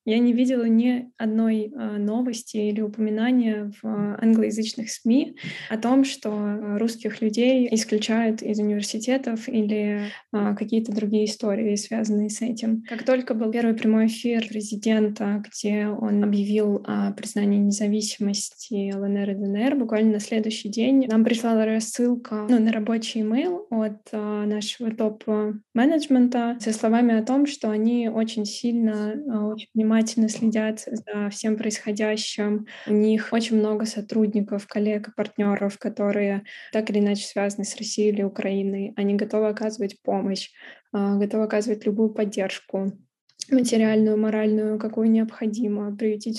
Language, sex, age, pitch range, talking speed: Russian, female, 20-39, 210-225 Hz, 130 wpm